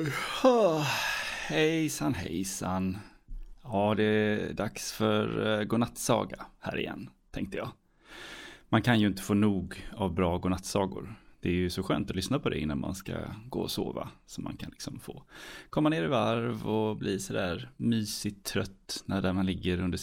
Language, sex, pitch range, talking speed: Swedish, male, 90-115 Hz, 170 wpm